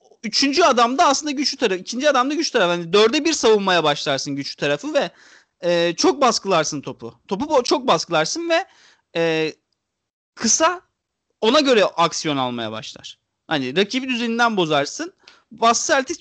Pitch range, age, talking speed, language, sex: 175-275 Hz, 40-59, 145 wpm, Turkish, male